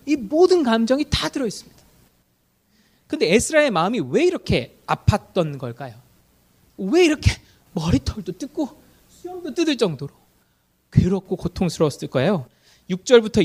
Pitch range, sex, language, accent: 185-255 Hz, male, Korean, native